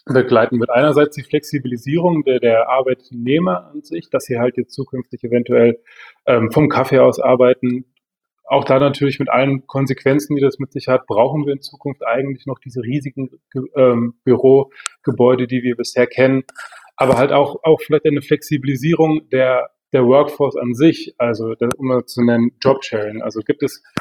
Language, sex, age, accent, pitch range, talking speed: German, male, 30-49, German, 120-135 Hz, 170 wpm